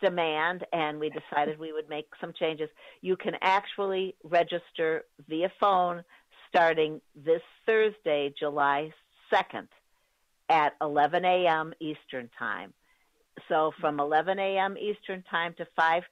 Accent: American